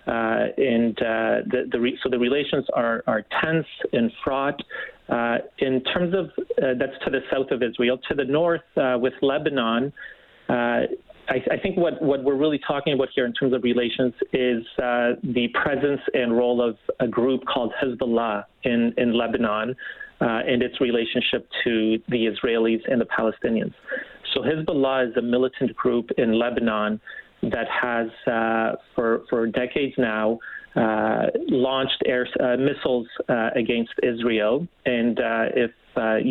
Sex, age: male, 40-59